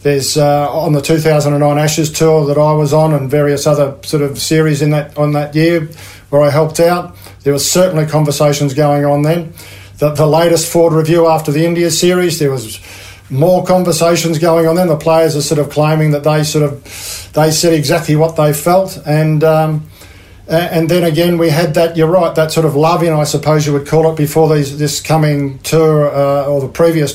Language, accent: English, Australian